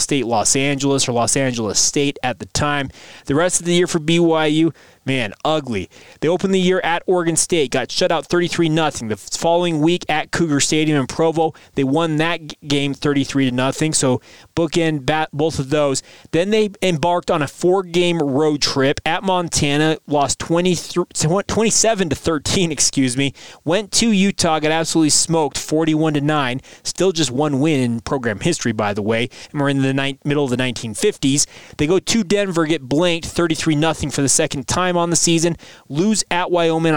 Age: 20-39